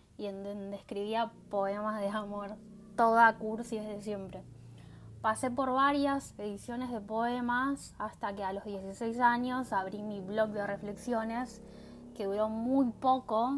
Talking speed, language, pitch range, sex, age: 140 wpm, Spanish, 205-245 Hz, female, 10-29